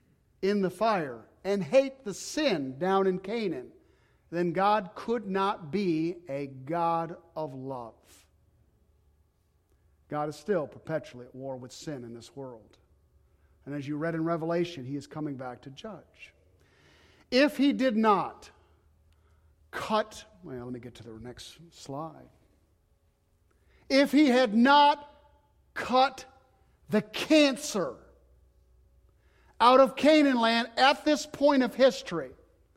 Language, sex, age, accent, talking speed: English, male, 50-69, American, 130 wpm